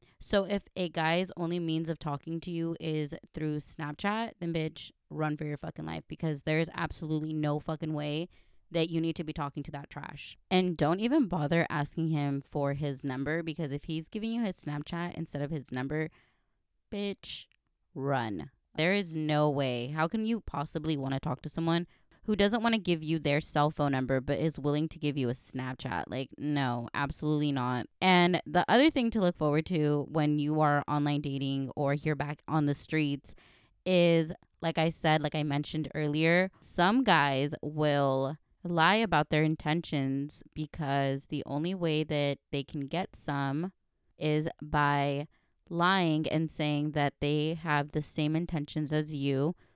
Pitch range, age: 145-165 Hz, 20-39